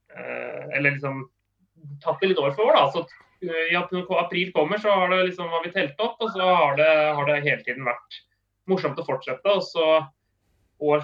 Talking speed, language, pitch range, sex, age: 190 wpm, Swedish, 135-165 Hz, male, 30-49